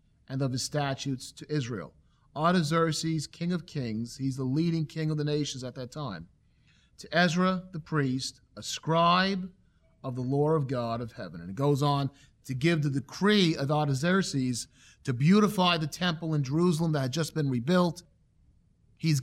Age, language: 40-59, English